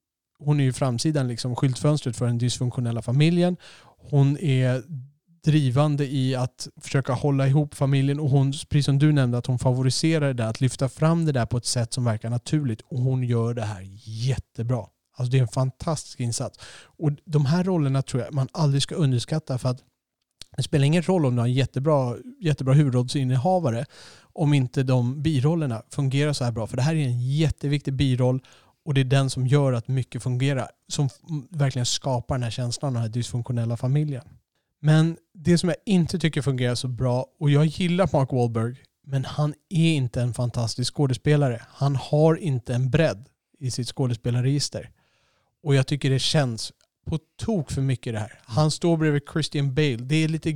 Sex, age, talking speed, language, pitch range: male, 30-49, 190 wpm, Swedish, 125-150 Hz